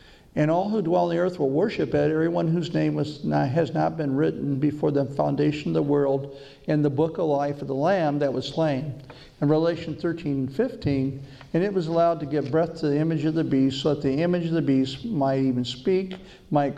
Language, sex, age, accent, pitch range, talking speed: English, male, 50-69, American, 135-165 Hz, 225 wpm